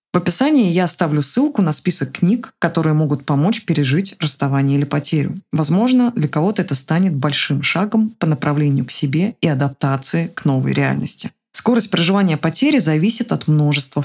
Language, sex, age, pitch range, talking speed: Russian, female, 20-39, 150-185 Hz, 160 wpm